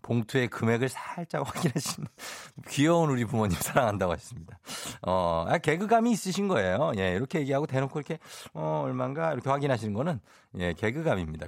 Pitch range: 95-135 Hz